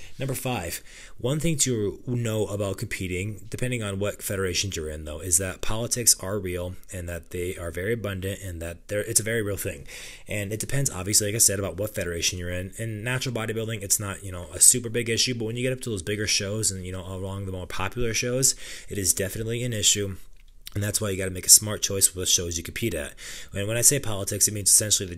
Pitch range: 95-110 Hz